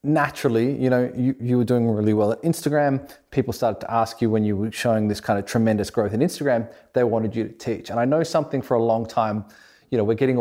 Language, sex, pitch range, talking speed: English, male, 110-130 Hz, 255 wpm